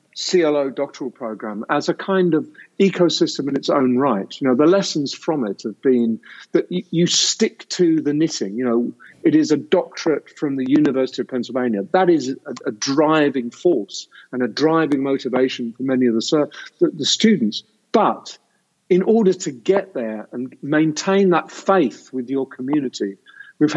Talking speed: 170 wpm